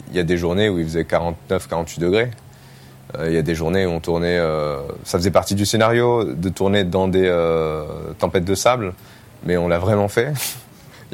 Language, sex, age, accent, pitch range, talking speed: French, male, 20-39, French, 85-100 Hz, 210 wpm